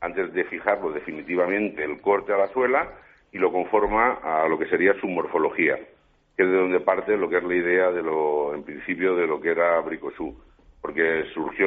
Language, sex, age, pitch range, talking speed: Spanish, male, 50-69, 90-105 Hz, 200 wpm